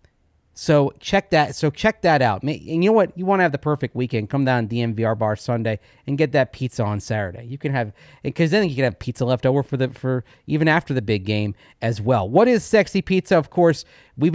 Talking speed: 240 wpm